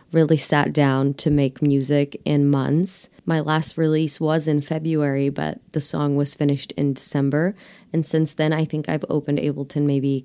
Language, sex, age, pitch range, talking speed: English, female, 20-39, 145-175 Hz, 180 wpm